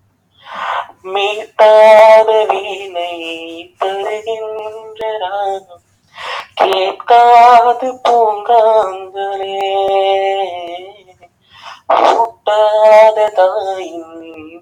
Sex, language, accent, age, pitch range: male, Tamil, native, 20-39, 195-250 Hz